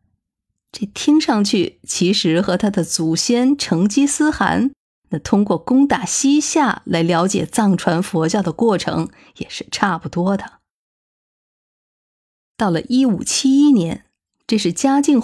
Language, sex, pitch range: Chinese, female, 165-230 Hz